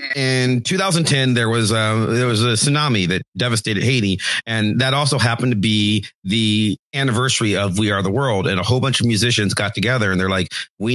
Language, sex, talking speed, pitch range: English, male, 205 wpm, 95-115 Hz